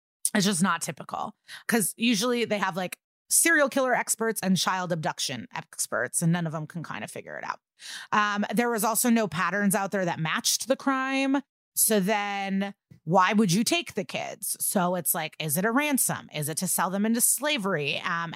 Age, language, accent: 30-49, English, American